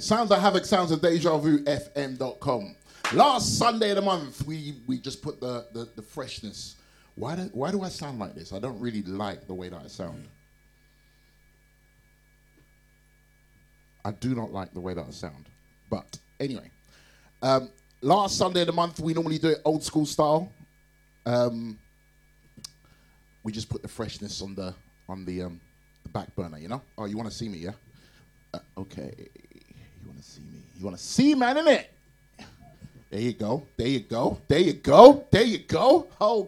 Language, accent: English, British